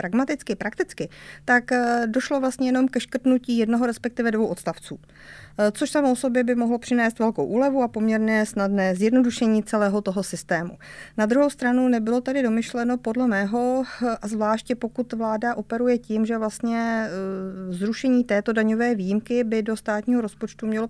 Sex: female